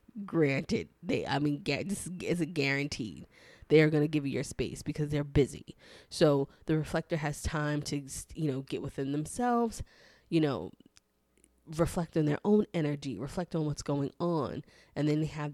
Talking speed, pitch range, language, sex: 180 wpm, 145-175 Hz, English, female